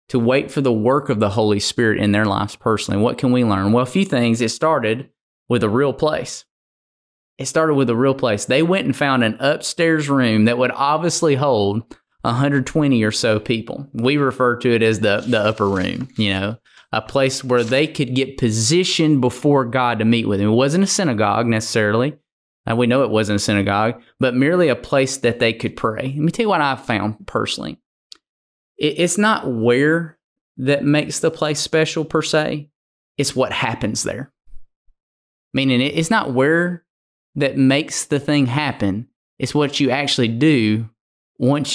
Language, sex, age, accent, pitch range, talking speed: English, male, 20-39, American, 110-145 Hz, 185 wpm